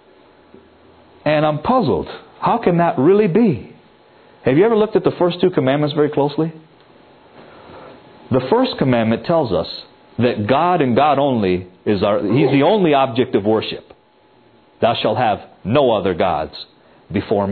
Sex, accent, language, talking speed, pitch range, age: male, American, Danish, 145 wpm, 130-210 Hz, 50-69